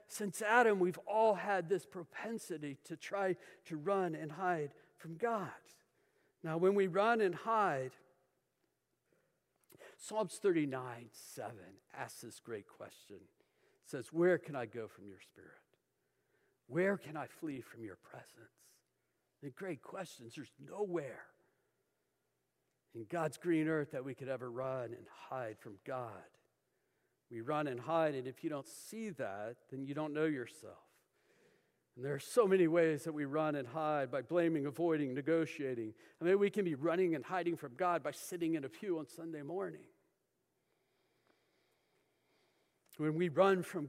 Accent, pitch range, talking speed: American, 140-180 Hz, 155 wpm